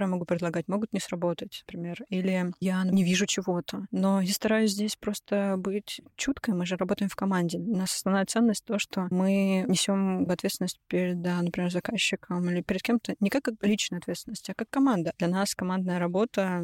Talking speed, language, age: 185 wpm, Russian, 20-39